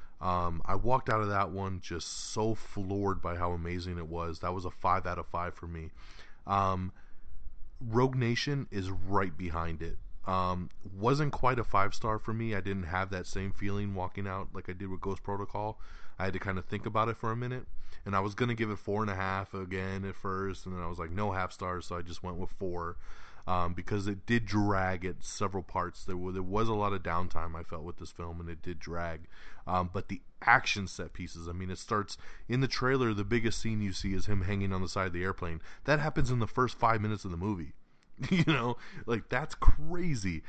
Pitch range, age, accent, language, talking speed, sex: 85-105 Hz, 20-39, American, English, 230 wpm, male